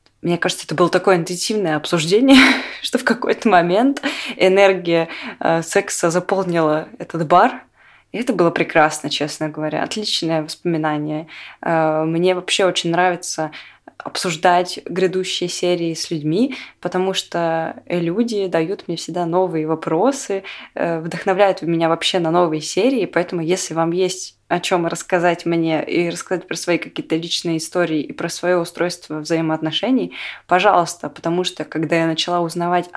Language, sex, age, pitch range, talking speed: Russian, female, 20-39, 165-205 Hz, 135 wpm